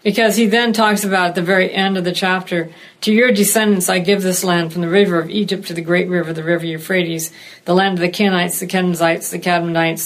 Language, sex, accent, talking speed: English, female, American, 240 wpm